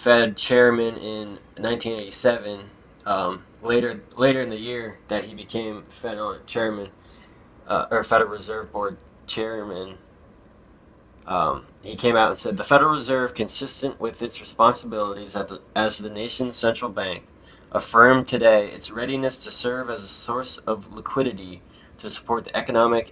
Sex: male